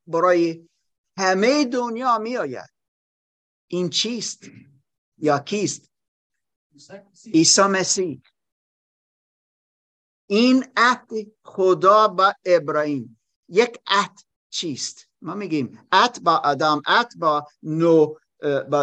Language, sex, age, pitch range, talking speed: Persian, male, 50-69, 155-235 Hz, 80 wpm